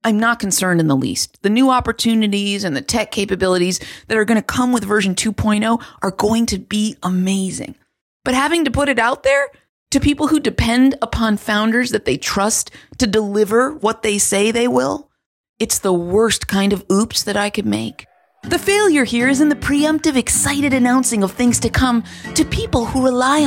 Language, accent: English, American